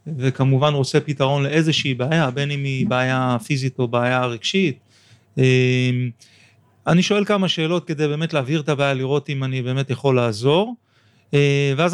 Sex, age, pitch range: male, 30-49, 130-170 Hz